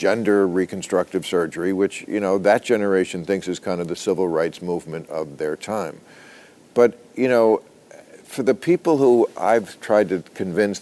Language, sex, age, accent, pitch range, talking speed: English, male, 50-69, American, 95-125 Hz, 165 wpm